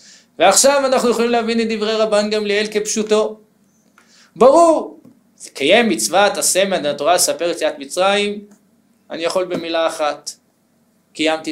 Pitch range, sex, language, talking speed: 145-220 Hz, male, English, 115 wpm